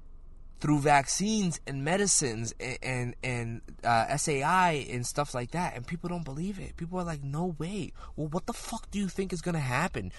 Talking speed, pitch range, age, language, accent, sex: 200 wpm, 105-180 Hz, 20-39, English, American, male